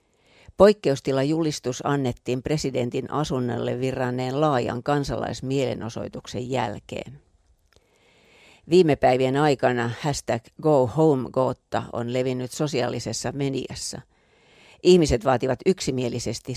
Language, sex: Finnish, female